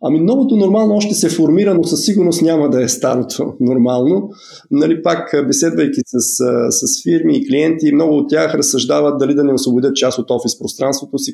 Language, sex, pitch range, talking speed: Bulgarian, male, 135-170 Hz, 185 wpm